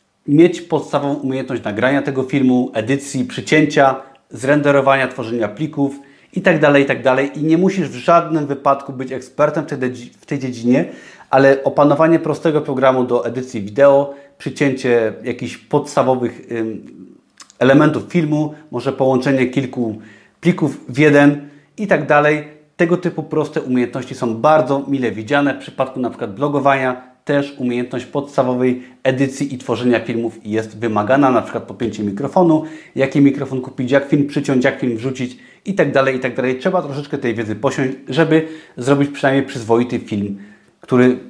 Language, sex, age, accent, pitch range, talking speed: Polish, male, 30-49, native, 125-150 Hz, 135 wpm